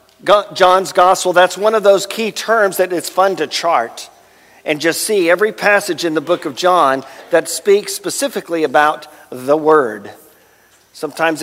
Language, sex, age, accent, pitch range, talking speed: English, male, 50-69, American, 130-175 Hz, 160 wpm